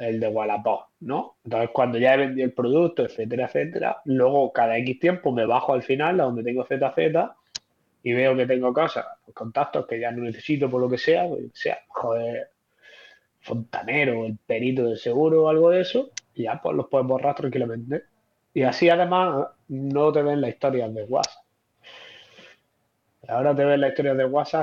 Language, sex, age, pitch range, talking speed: Spanish, male, 20-39, 120-155 Hz, 190 wpm